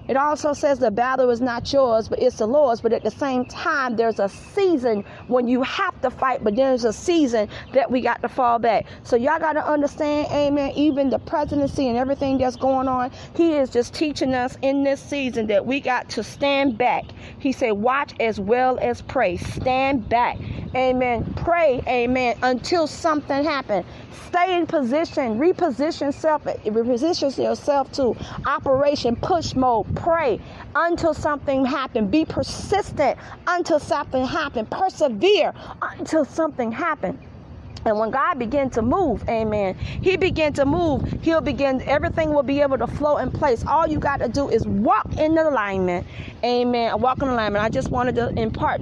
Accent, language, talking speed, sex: American, English, 175 wpm, female